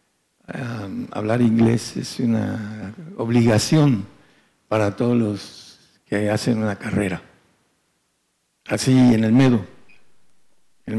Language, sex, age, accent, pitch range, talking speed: Spanish, male, 60-79, Mexican, 105-120 Hz, 95 wpm